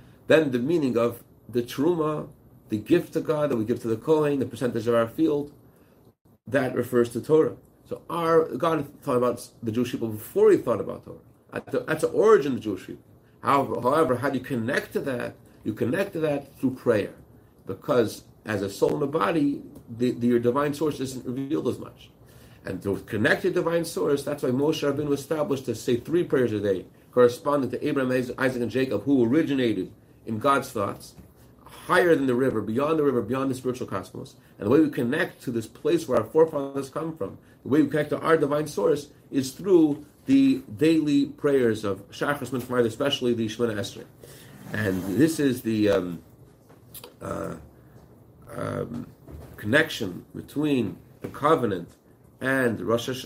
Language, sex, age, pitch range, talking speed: English, male, 40-59, 120-150 Hz, 180 wpm